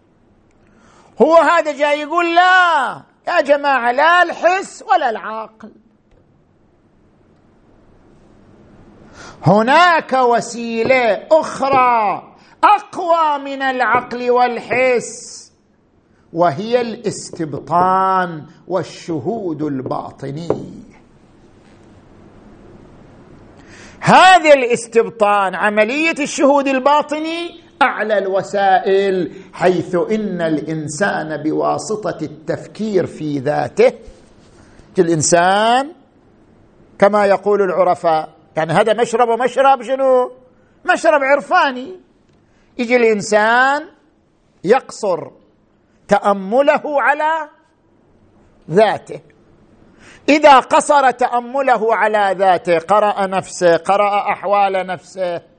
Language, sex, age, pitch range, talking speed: Arabic, male, 50-69, 170-275 Hz, 70 wpm